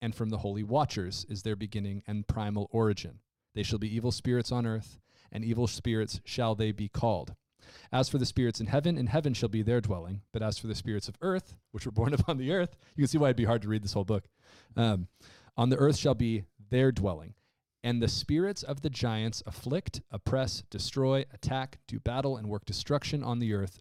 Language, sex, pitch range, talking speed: English, male, 105-130 Hz, 220 wpm